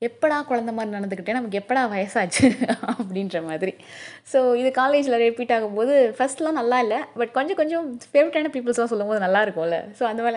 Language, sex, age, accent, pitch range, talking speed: Tamil, female, 20-39, native, 205-270 Hz, 160 wpm